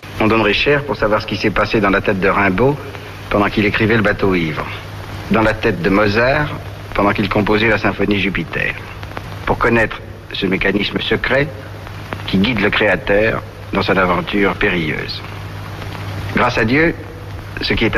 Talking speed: 165 wpm